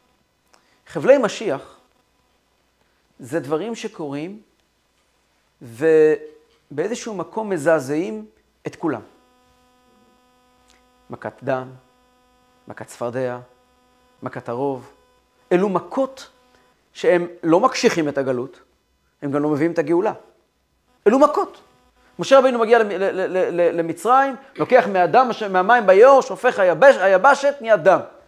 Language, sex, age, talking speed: Hebrew, male, 40-59, 90 wpm